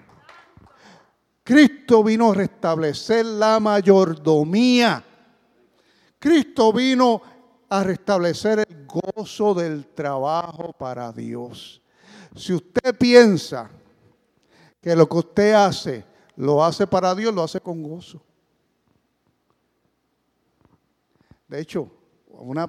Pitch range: 160-210 Hz